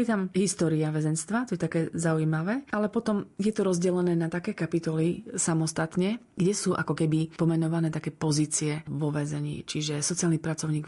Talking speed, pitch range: 160 wpm, 155-175 Hz